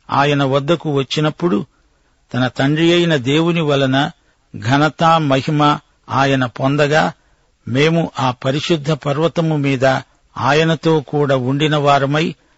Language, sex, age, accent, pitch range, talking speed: Telugu, male, 50-69, native, 135-155 Hz, 100 wpm